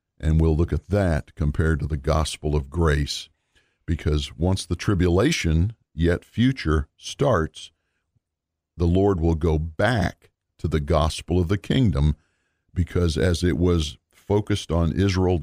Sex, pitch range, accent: male, 80-95 Hz, American